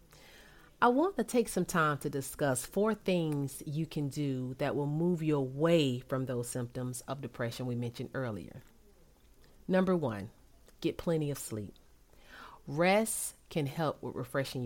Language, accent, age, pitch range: English, American, 40-59, 140-210 Hz